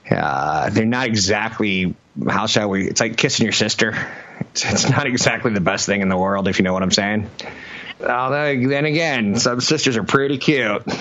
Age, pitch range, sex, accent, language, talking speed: 30-49, 95-125 Hz, male, American, English, 195 wpm